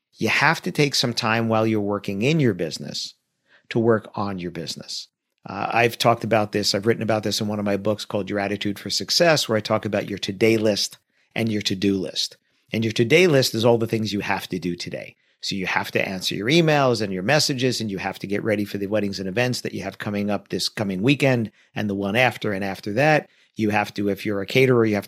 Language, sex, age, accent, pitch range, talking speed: English, male, 50-69, American, 105-125 Hz, 250 wpm